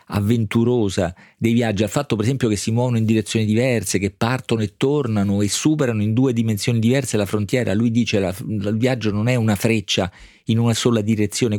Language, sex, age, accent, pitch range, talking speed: Italian, male, 40-59, native, 95-110 Hz, 195 wpm